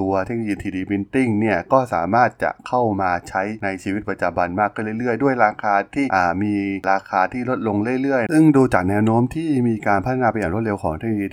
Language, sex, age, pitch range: Thai, male, 20-39, 95-130 Hz